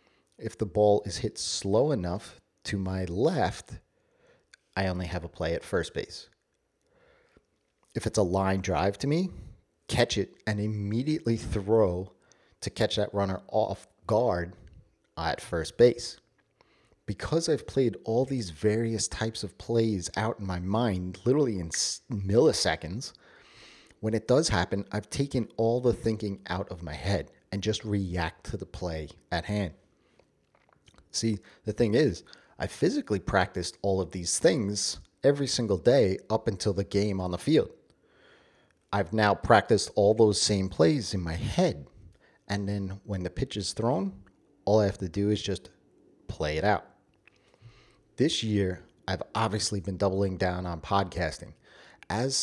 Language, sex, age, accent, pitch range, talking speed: English, male, 30-49, American, 90-110 Hz, 155 wpm